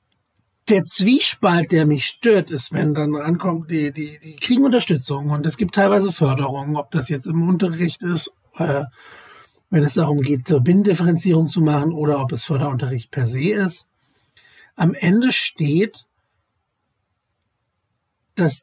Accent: German